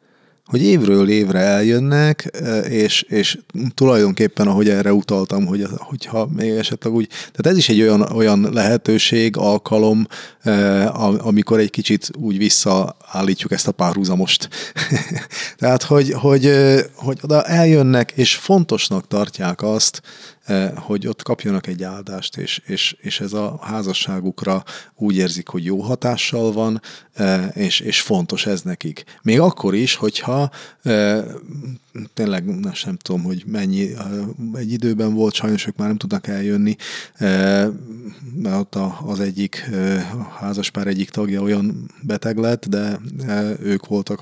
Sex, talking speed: male, 135 wpm